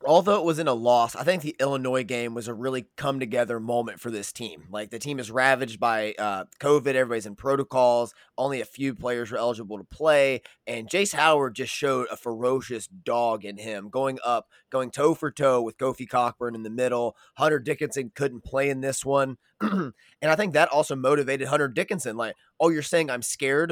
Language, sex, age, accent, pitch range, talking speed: English, male, 20-39, American, 120-145 Hz, 200 wpm